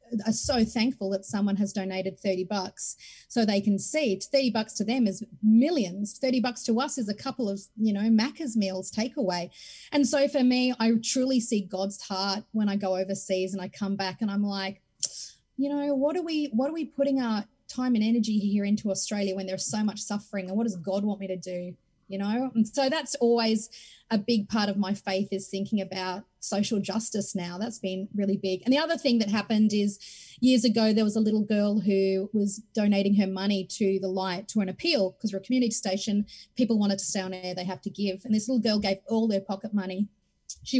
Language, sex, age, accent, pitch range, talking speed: English, female, 30-49, Australian, 195-230 Hz, 225 wpm